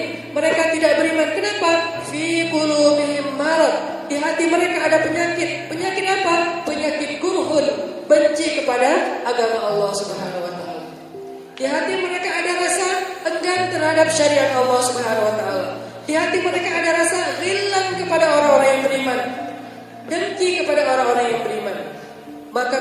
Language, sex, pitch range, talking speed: Indonesian, female, 250-320 Hz, 135 wpm